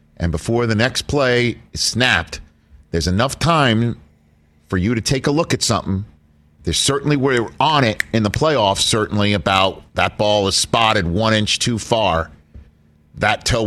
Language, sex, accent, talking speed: English, male, American, 165 wpm